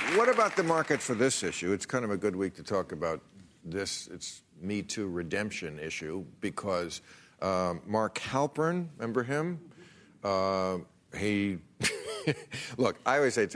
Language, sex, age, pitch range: English, male, 50-69, 100-135 Hz